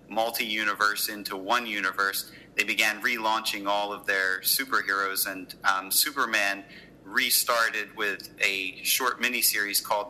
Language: English